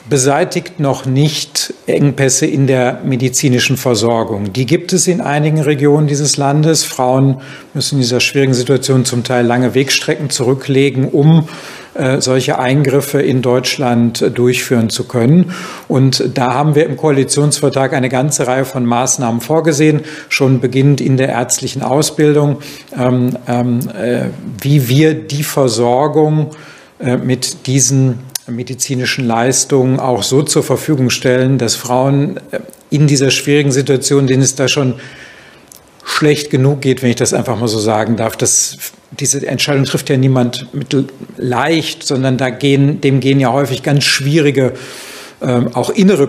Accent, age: German, 50-69